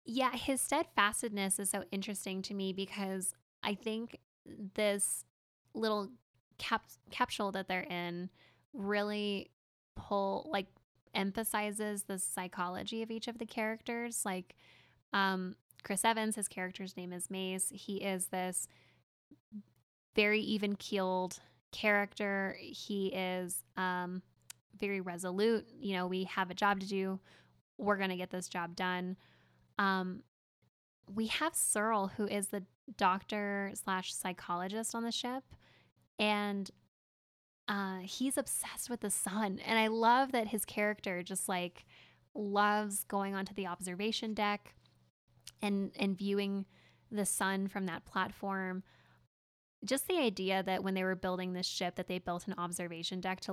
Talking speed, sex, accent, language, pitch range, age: 135 wpm, female, American, English, 185-210 Hz, 10-29